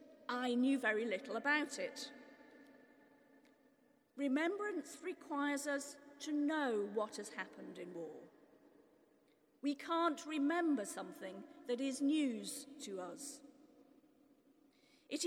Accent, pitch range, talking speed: British, 250-290 Hz, 100 wpm